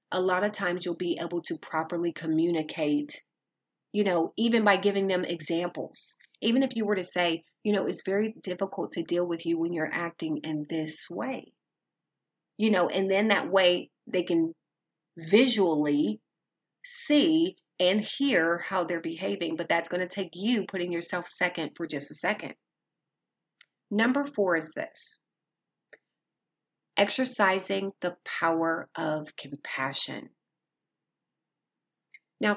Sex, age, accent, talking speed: female, 30-49, American, 140 wpm